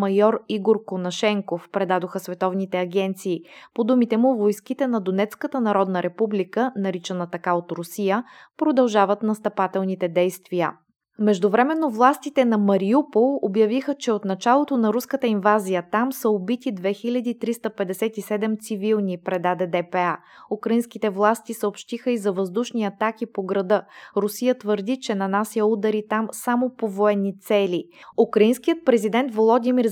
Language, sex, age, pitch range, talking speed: Bulgarian, female, 20-39, 195-235 Hz, 120 wpm